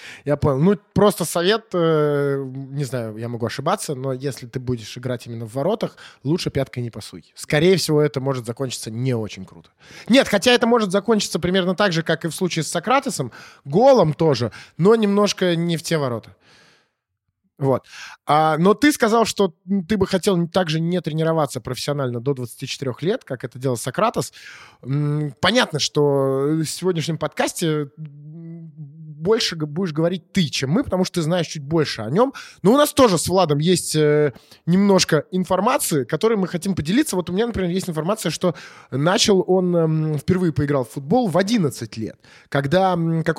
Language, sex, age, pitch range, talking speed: Russian, male, 20-39, 140-195 Hz, 170 wpm